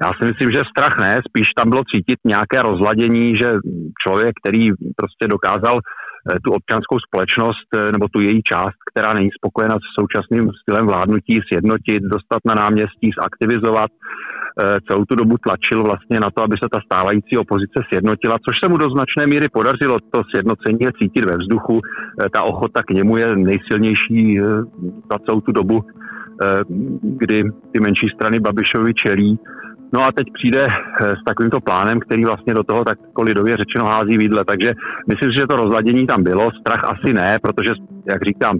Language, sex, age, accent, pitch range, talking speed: Czech, male, 40-59, native, 105-115 Hz, 165 wpm